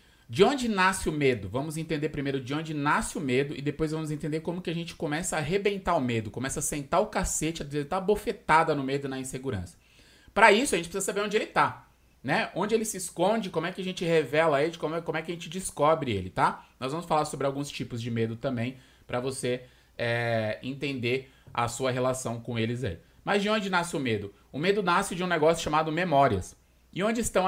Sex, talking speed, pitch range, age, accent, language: male, 230 wpm, 130-175 Hz, 20-39, Brazilian, Portuguese